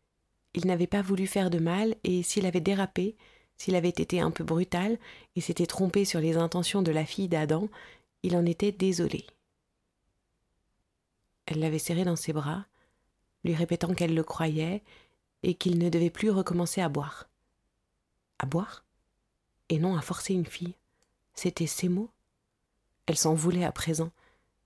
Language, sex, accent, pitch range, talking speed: French, female, French, 160-180 Hz, 160 wpm